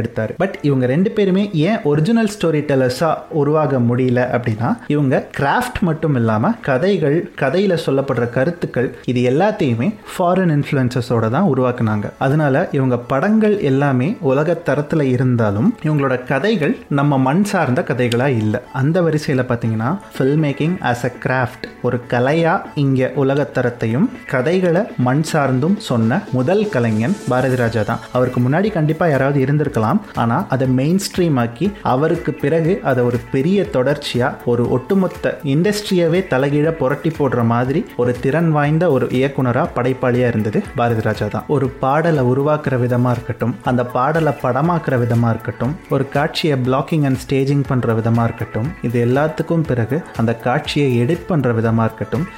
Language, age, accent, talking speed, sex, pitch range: Tamil, 30-49, native, 40 wpm, male, 125-160 Hz